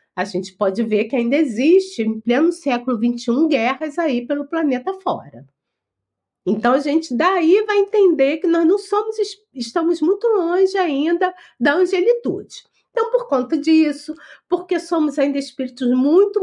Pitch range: 265-365 Hz